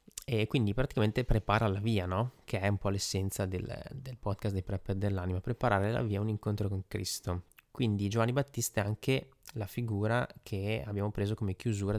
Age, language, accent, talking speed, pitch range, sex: 20-39, Italian, native, 190 wpm, 95-115 Hz, male